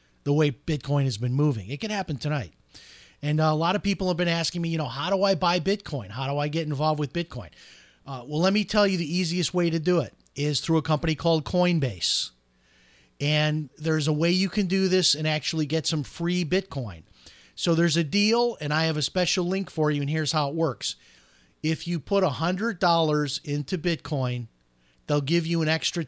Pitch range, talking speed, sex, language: 130-175 Hz, 220 wpm, male, English